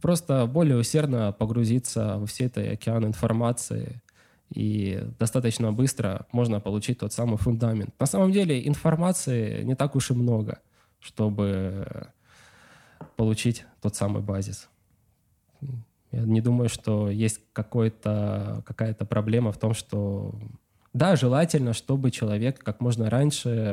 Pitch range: 105-130 Hz